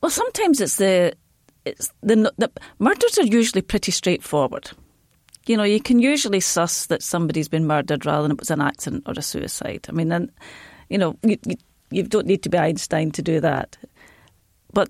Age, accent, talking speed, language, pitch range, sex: 40-59, British, 195 wpm, English, 170-235 Hz, female